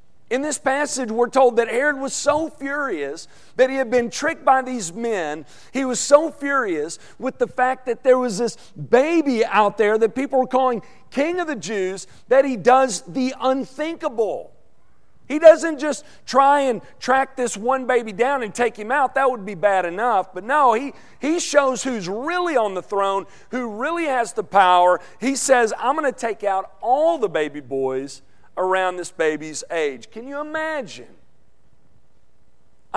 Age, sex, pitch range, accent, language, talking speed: 40-59, male, 180-265 Hz, American, English, 175 wpm